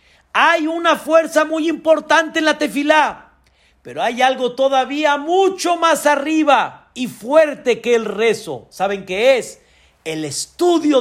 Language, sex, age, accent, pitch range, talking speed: Spanish, male, 50-69, Mexican, 220-290 Hz, 135 wpm